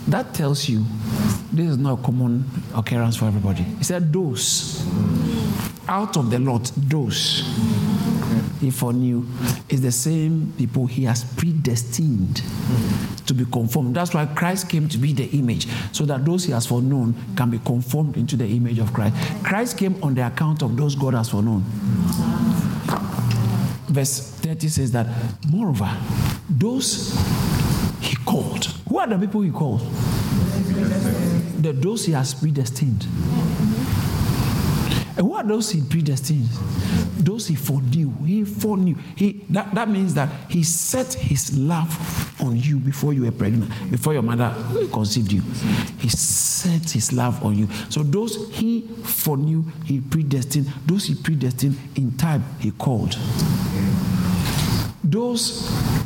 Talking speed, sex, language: 140 wpm, male, English